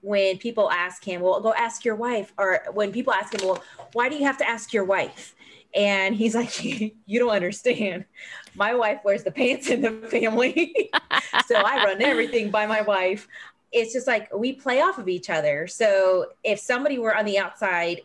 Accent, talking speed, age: American, 200 wpm, 20-39